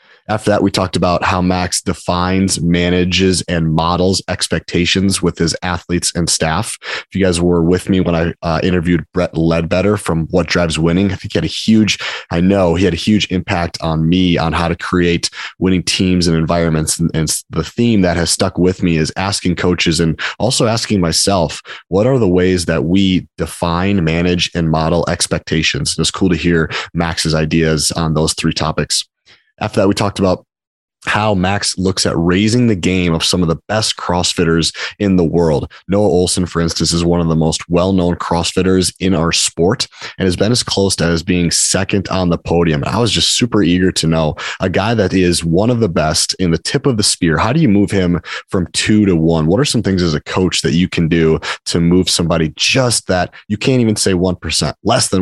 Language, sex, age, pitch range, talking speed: English, male, 30-49, 85-95 Hz, 210 wpm